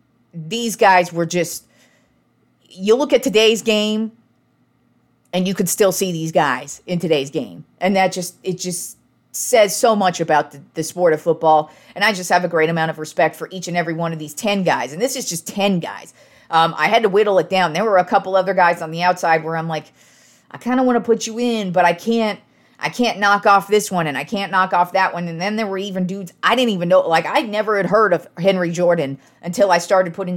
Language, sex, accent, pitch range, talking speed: English, female, American, 165-210 Hz, 240 wpm